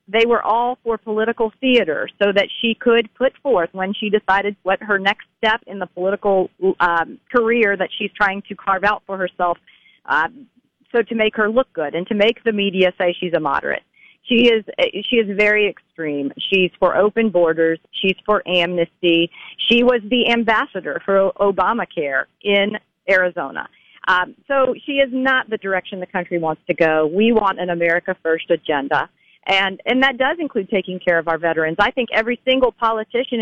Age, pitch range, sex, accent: 40-59, 180-225 Hz, female, American